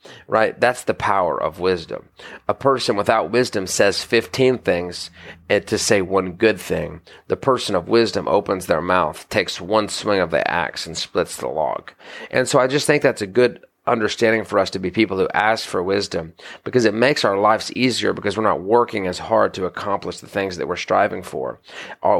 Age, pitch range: 30-49, 95-120 Hz